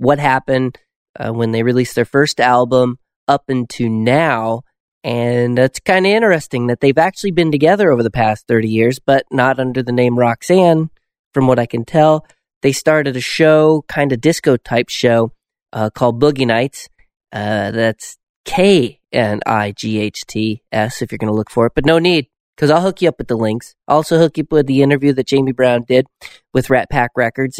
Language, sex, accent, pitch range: English, male, American, 120-150 Hz